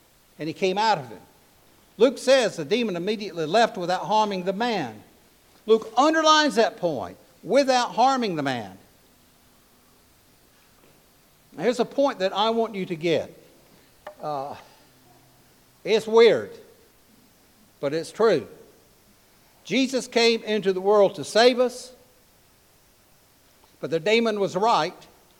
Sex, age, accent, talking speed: male, 60-79, American, 125 wpm